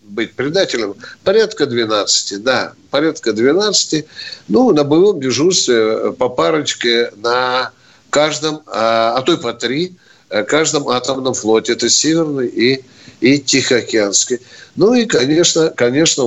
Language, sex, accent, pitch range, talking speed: Russian, male, native, 115-160 Hz, 120 wpm